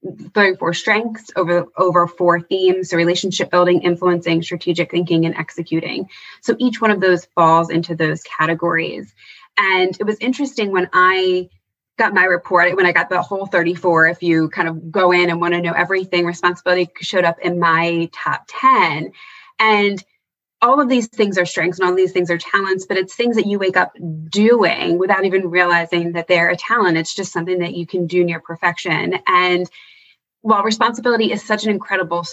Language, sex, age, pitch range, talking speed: English, female, 20-39, 175-215 Hz, 185 wpm